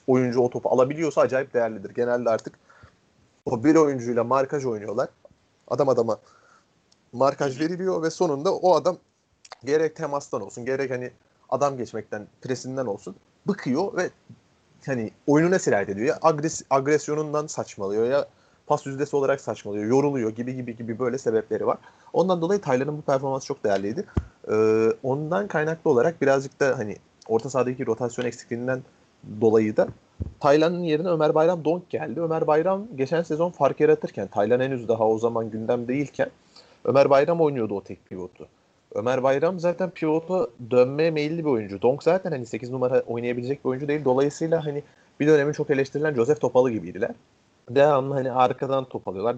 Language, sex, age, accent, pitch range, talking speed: Turkish, male, 30-49, native, 125-155 Hz, 155 wpm